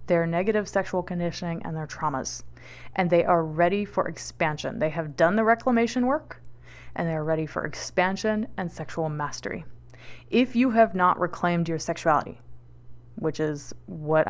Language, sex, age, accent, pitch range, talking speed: English, female, 20-39, American, 160-195 Hz, 155 wpm